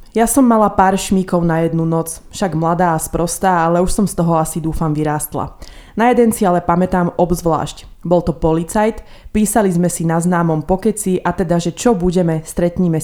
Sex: female